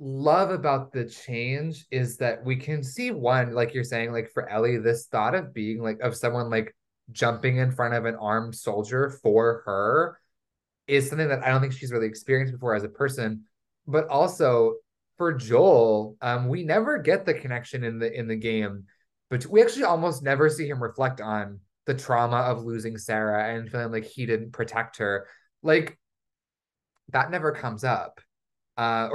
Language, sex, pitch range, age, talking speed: English, male, 115-135 Hz, 20-39, 180 wpm